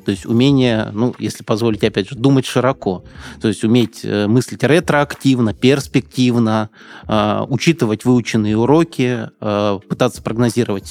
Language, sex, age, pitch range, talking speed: Russian, male, 20-39, 105-125 Hz, 125 wpm